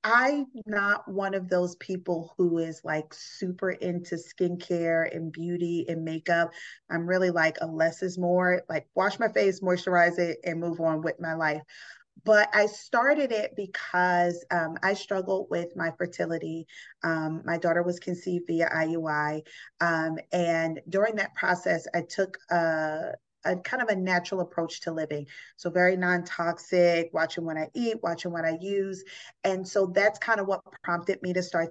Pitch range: 170-200 Hz